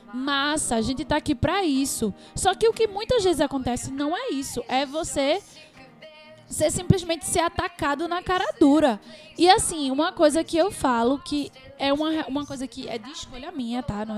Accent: Brazilian